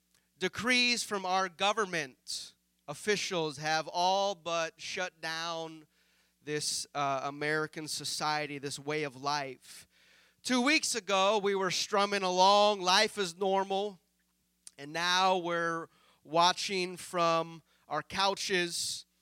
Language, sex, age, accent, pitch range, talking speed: English, male, 30-49, American, 160-210 Hz, 110 wpm